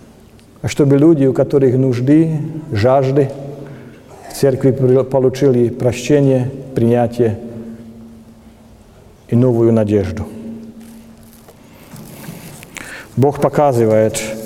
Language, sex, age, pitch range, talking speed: Russian, male, 50-69, 115-140 Hz, 70 wpm